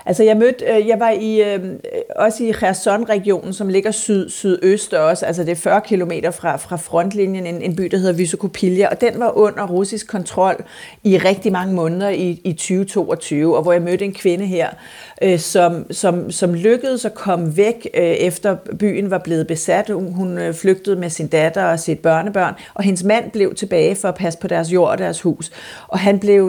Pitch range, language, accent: 170-210 Hz, Danish, native